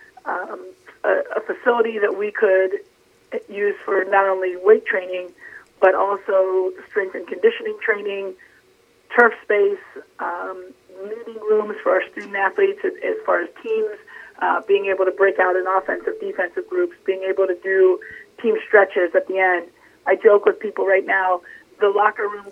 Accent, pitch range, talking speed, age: American, 190-295 Hz, 155 wpm, 30-49